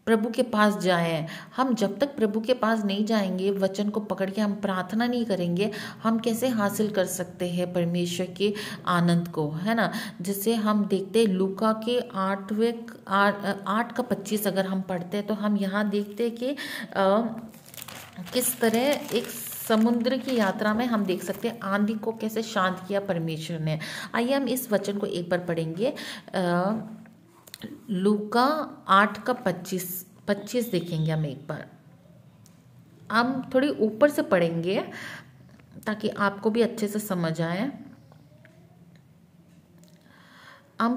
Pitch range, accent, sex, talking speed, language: 185-230 Hz, native, female, 145 wpm, Hindi